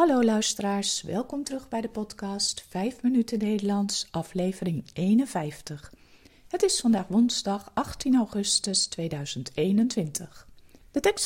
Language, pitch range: Dutch, 170-240 Hz